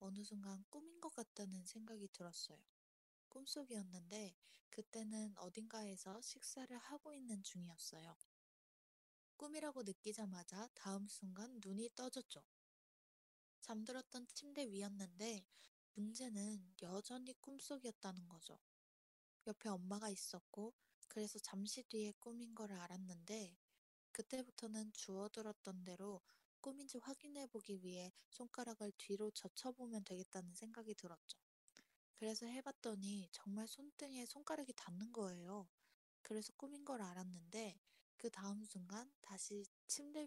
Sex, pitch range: female, 195-240 Hz